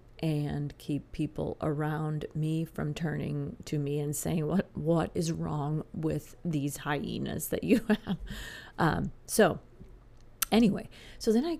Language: English